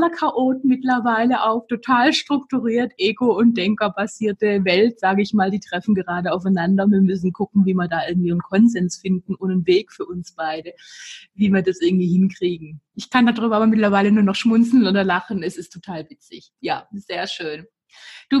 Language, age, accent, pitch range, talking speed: German, 20-39, German, 180-230 Hz, 180 wpm